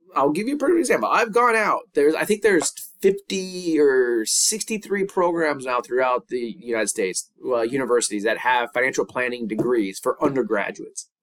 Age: 20-39